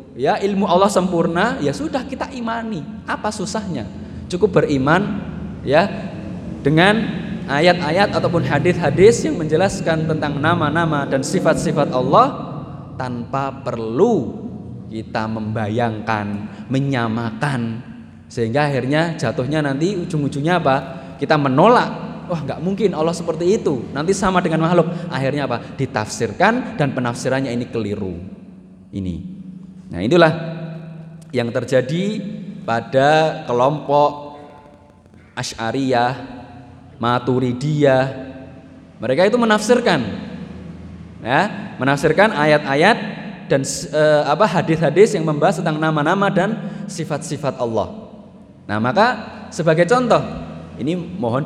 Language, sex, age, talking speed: Indonesian, male, 20-39, 100 wpm